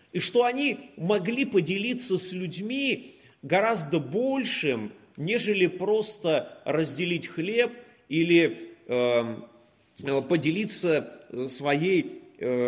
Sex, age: male, 30-49